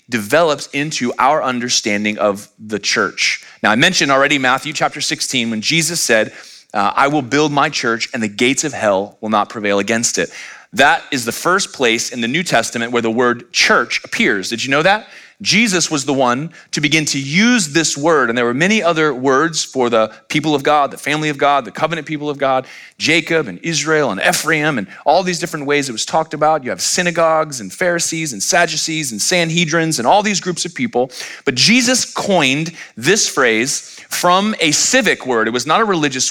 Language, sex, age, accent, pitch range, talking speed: English, male, 30-49, American, 130-165 Hz, 205 wpm